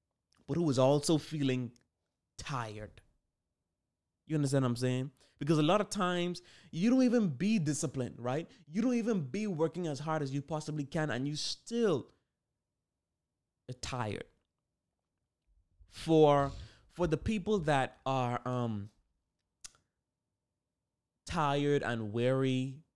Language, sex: English, male